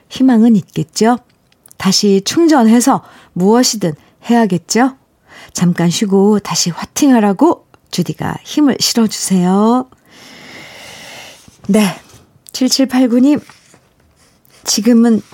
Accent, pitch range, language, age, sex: native, 170-230 Hz, Korean, 50-69, female